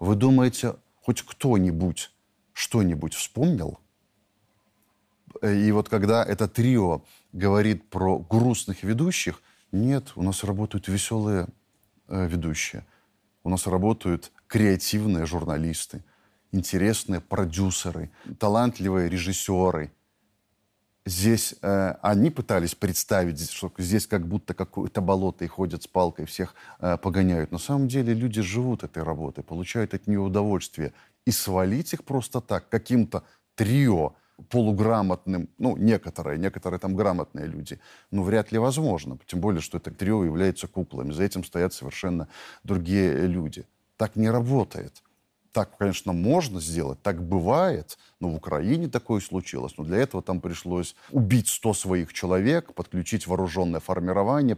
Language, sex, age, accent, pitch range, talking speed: Russian, male, 30-49, native, 90-110 Hz, 130 wpm